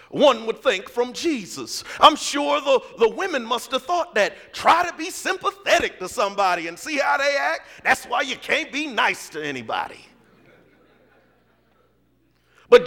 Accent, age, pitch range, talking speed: American, 40-59, 240-330 Hz, 160 wpm